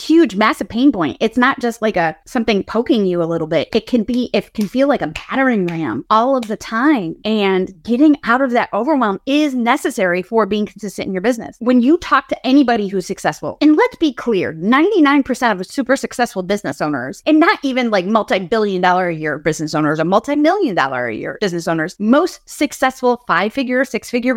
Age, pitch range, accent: 30-49, 185-240 Hz, American